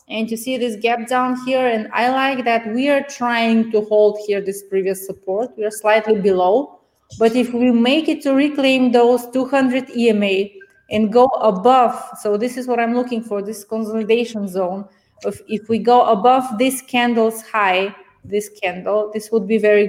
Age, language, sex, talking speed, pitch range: 20-39, English, female, 180 wpm, 200-245 Hz